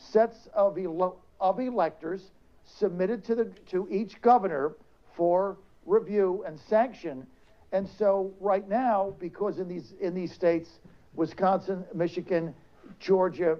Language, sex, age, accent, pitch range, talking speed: English, male, 60-79, American, 170-210 Hz, 125 wpm